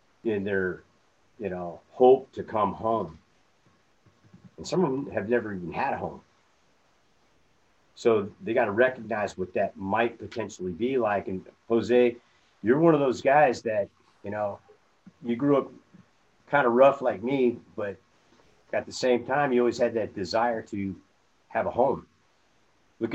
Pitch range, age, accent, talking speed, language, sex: 100-125 Hz, 50-69, American, 160 wpm, English, male